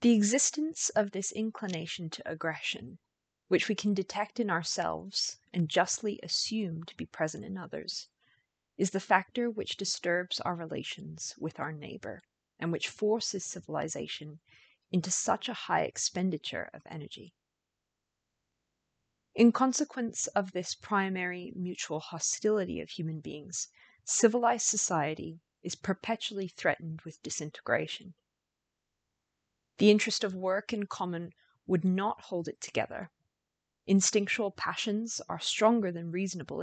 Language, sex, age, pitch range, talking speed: English, female, 30-49, 170-210 Hz, 125 wpm